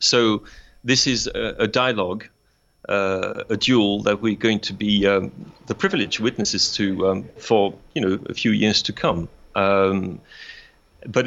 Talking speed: 155 wpm